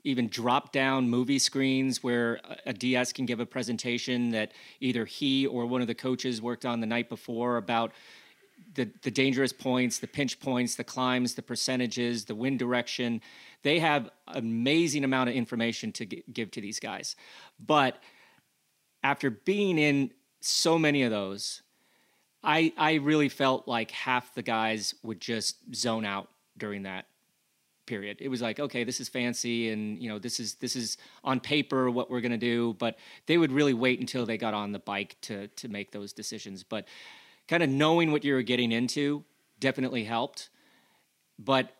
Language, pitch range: English, 120-135 Hz